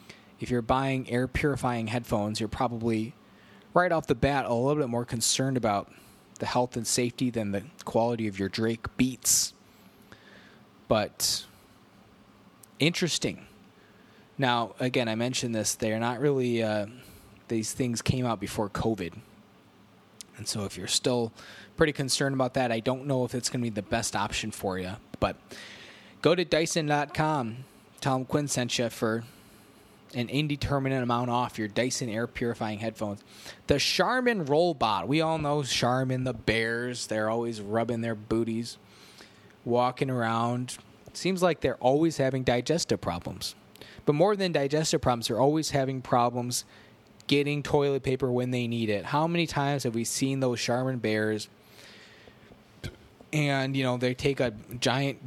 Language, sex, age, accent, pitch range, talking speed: English, male, 20-39, American, 110-135 Hz, 150 wpm